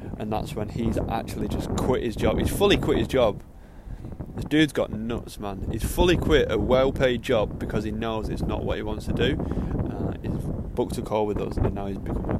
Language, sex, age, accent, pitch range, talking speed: English, male, 20-39, British, 100-120 Hz, 235 wpm